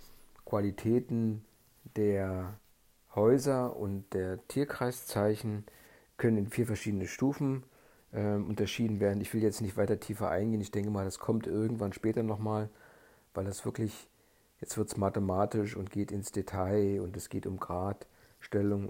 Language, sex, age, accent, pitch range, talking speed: German, male, 50-69, German, 100-115 Hz, 145 wpm